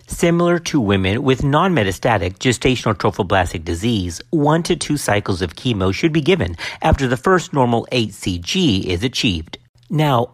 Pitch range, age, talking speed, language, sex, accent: 105-155 Hz, 50-69, 145 wpm, English, male, American